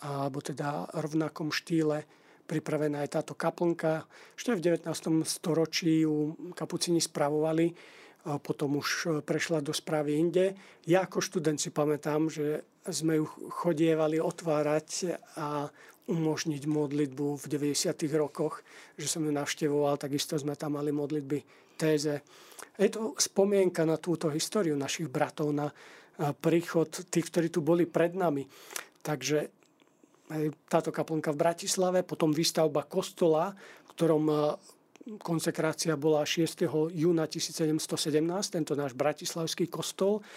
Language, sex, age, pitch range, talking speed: Slovak, male, 40-59, 150-170 Hz, 120 wpm